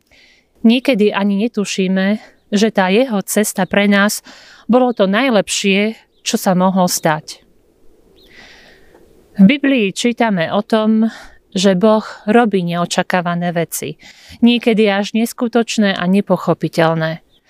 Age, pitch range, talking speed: 40-59, 185-230 Hz, 105 wpm